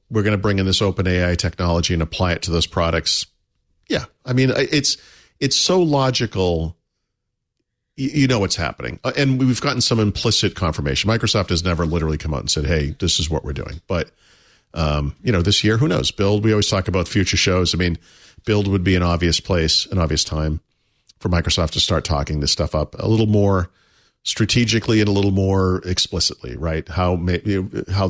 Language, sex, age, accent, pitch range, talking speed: English, male, 50-69, American, 85-110 Hz, 195 wpm